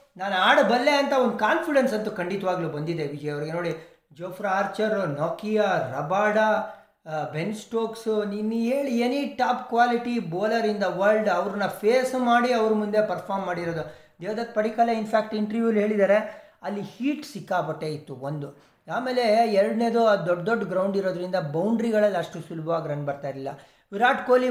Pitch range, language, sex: 185-240 Hz, Kannada, male